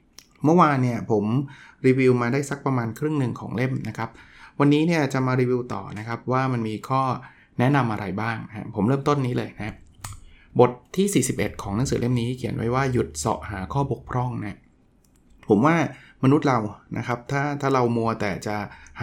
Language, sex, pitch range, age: Thai, male, 105-135 Hz, 20-39